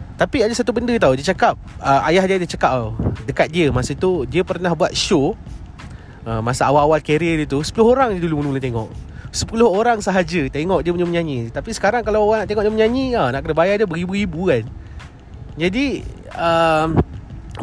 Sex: male